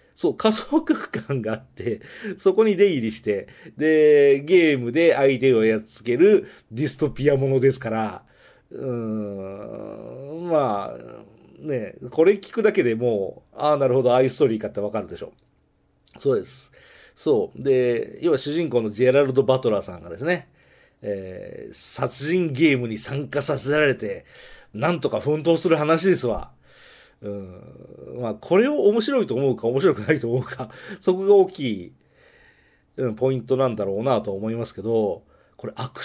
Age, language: 40-59, Japanese